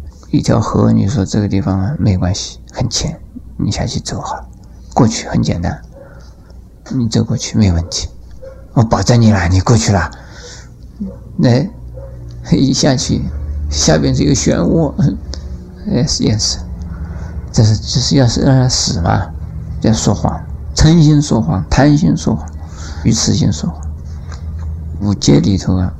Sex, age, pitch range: male, 50-69, 80-115 Hz